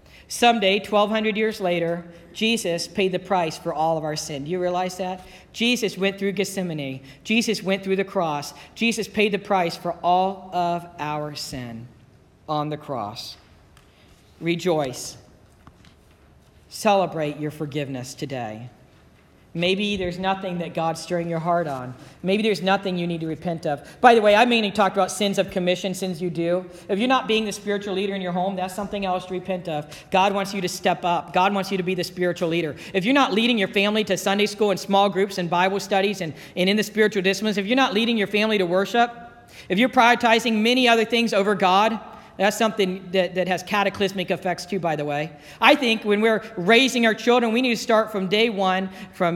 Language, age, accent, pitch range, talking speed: English, 40-59, American, 175-220 Hz, 200 wpm